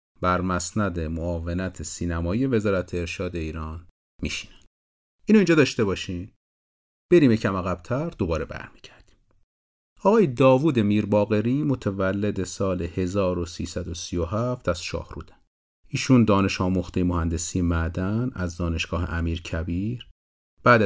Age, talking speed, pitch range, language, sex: 40-59, 100 wpm, 85-115 Hz, Persian, male